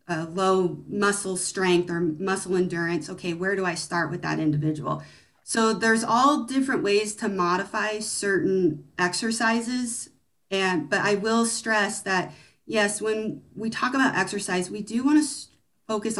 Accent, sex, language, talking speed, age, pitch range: American, female, English, 150 wpm, 30-49, 175-215 Hz